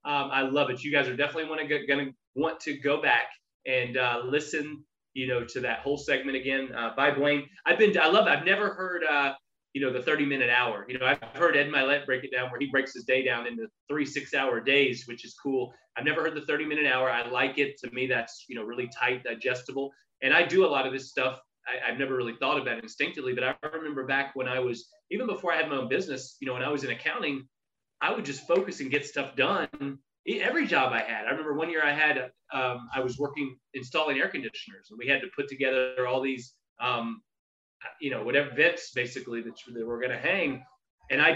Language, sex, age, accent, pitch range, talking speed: English, male, 20-39, American, 125-145 Hz, 240 wpm